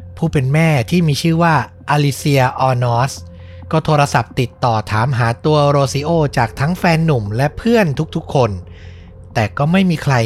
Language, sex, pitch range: Thai, male, 110-150 Hz